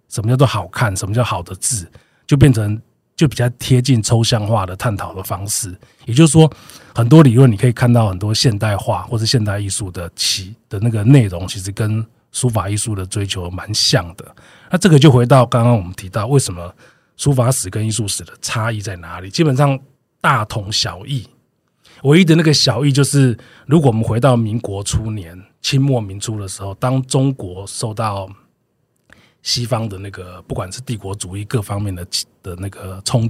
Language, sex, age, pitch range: Chinese, male, 20-39, 100-130 Hz